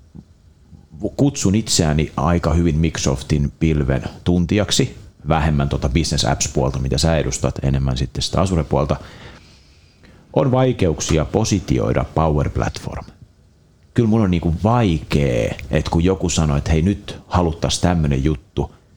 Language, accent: Finnish, native